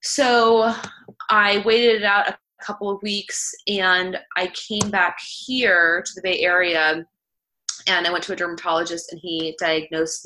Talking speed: 160 wpm